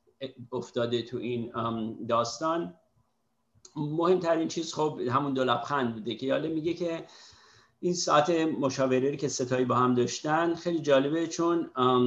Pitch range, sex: 120-145 Hz, male